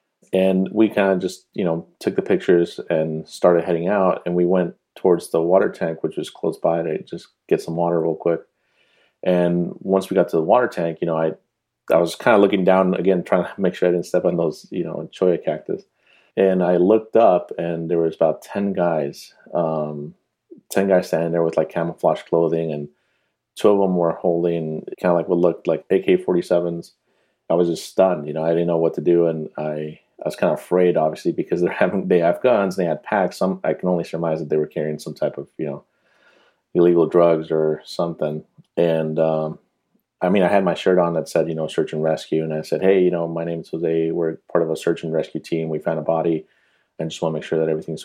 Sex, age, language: male, 30-49, English